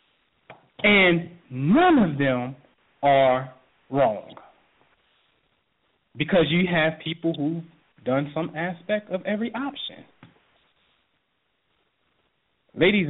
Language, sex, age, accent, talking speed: English, male, 40-59, American, 80 wpm